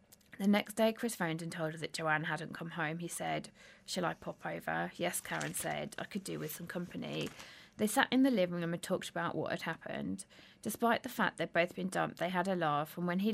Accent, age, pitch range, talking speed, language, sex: British, 20-39, 165-210 Hz, 245 wpm, English, female